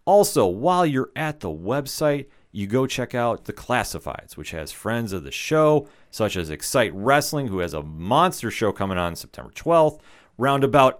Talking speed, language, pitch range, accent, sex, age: 175 wpm, English, 105-155 Hz, American, male, 30-49